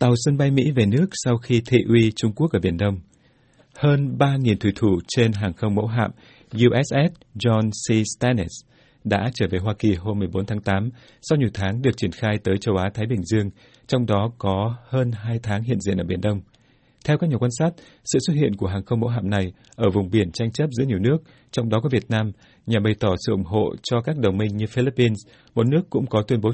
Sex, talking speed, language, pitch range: male, 235 wpm, Vietnamese, 105-130 Hz